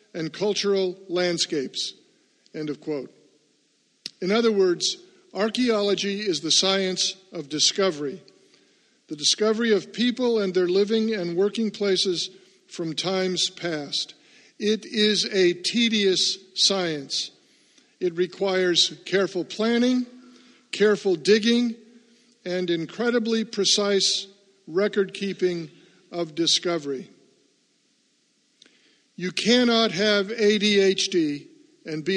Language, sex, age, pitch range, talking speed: English, male, 50-69, 180-220 Hz, 95 wpm